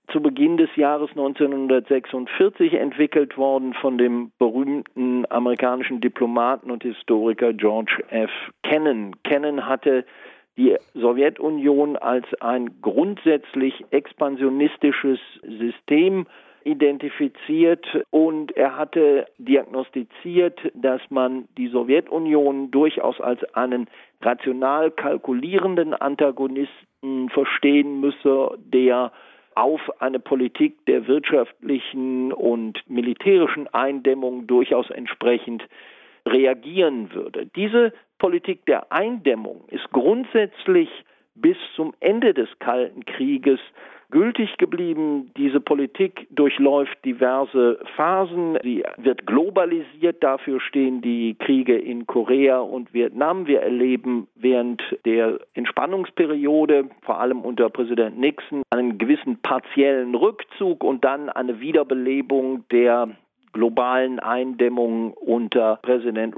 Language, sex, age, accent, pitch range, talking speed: German, male, 50-69, German, 125-155 Hz, 100 wpm